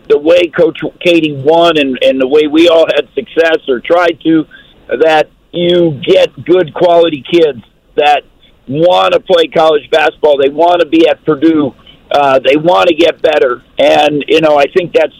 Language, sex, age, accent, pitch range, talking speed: English, male, 50-69, American, 155-215 Hz, 180 wpm